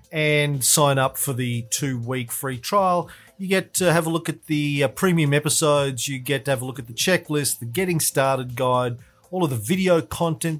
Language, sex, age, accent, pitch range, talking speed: English, male, 40-59, Australian, 120-155 Hz, 205 wpm